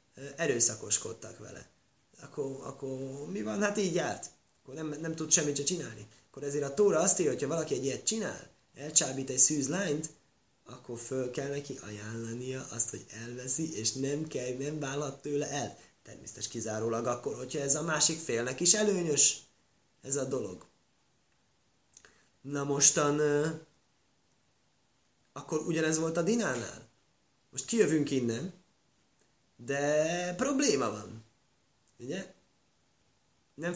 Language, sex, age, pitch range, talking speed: Hungarian, male, 20-39, 125-155 Hz, 130 wpm